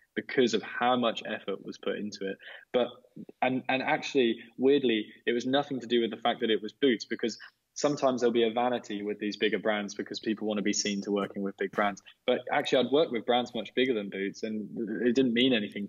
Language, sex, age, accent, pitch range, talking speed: English, male, 10-29, British, 105-125 Hz, 235 wpm